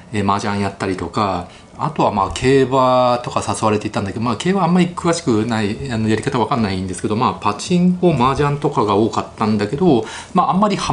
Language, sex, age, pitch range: Japanese, male, 30-49, 105-155 Hz